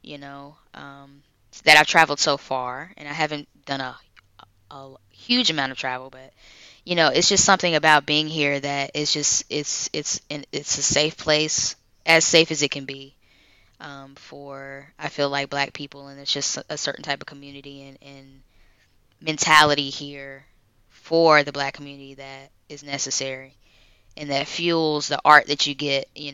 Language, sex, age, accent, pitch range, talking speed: English, female, 10-29, American, 135-150 Hz, 175 wpm